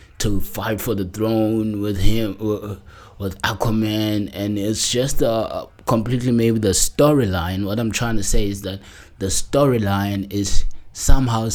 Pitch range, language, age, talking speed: 95-110 Hz, English, 20-39, 145 wpm